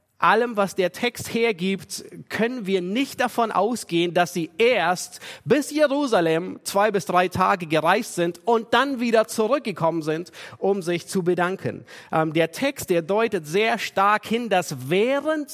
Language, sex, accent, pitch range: German, male, German, 170-235 Hz